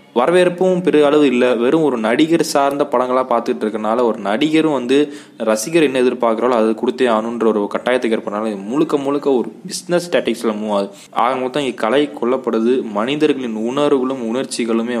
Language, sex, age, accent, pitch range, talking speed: Tamil, male, 20-39, native, 110-140 Hz, 145 wpm